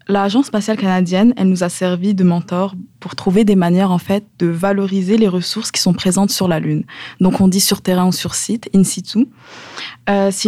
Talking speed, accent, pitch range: 210 wpm, French, 175-205 Hz